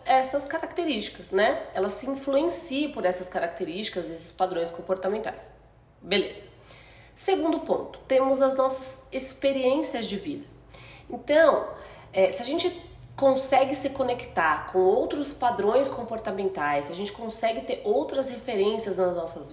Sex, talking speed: female, 125 wpm